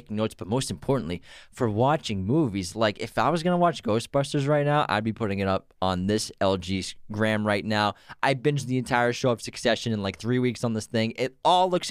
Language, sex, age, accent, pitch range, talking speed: English, male, 20-39, American, 110-160 Hz, 225 wpm